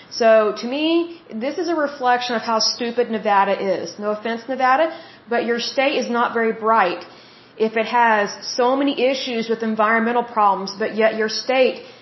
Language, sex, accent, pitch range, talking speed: Hindi, female, American, 215-250 Hz, 175 wpm